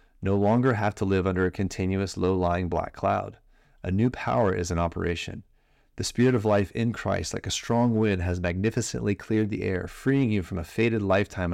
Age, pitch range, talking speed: 30-49, 90-115 Hz, 200 wpm